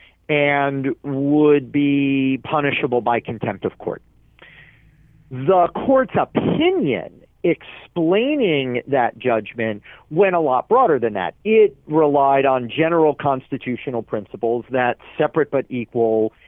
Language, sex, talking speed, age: English, male, 110 wpm, 40-59